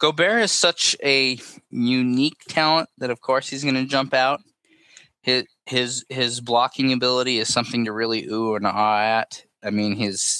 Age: 20-39